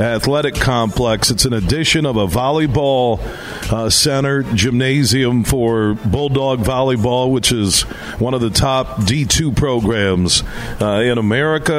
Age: 50-69